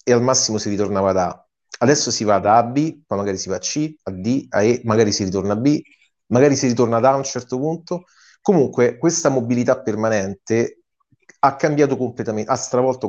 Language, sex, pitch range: Italian, male, 100-130 Hz